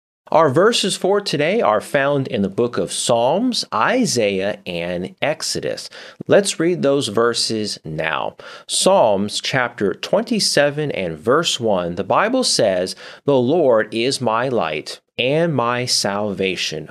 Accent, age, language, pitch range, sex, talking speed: American, 30-49, English, 105-170 Hz, male, 130 wpm